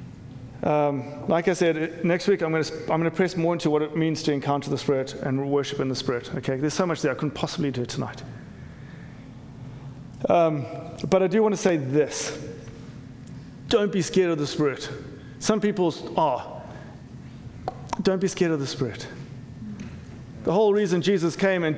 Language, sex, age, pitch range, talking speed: English, male, 30-49, 135-175 Hz, 185 wpm